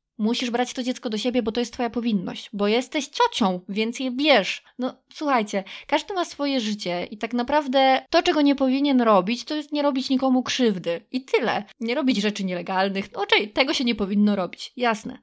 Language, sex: Polish, female